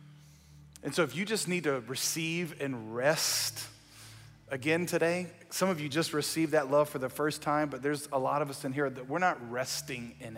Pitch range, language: 110-150 Hz, English